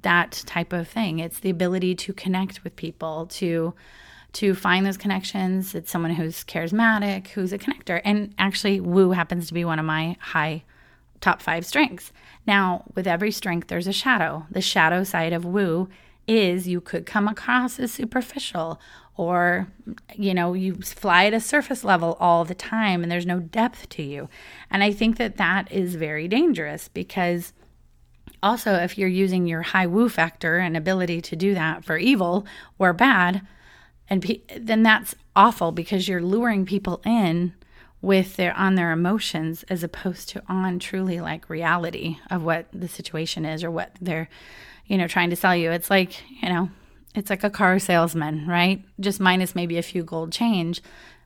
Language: English